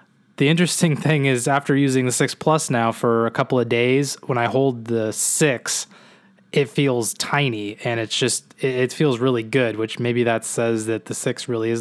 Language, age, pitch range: English, 20-39, 115-140 Hz